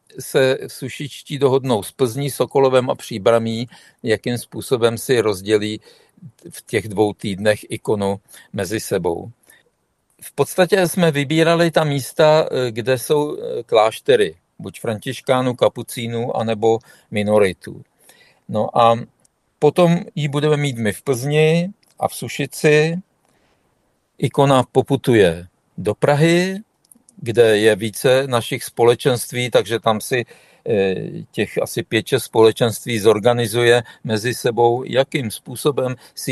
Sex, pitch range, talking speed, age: male, 115-150 Hz, 110 wpm, 50-69